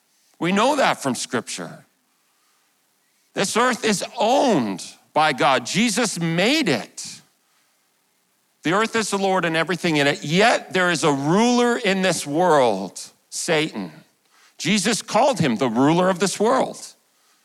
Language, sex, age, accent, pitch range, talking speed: English, male, 50-69, American, 170-215 Hz, 140 wpm